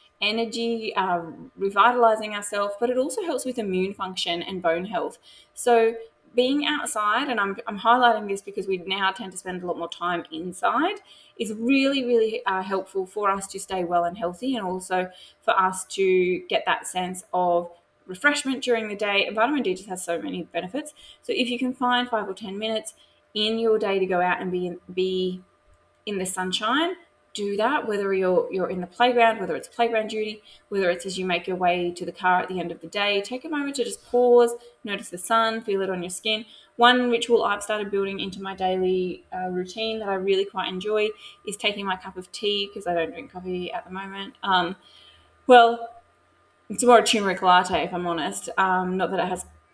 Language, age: English, 20-39